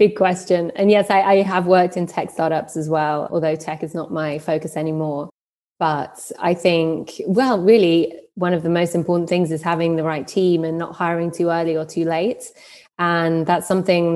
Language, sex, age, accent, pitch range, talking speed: English, female, 20-39, British, 170-190 Hz, 200 wpm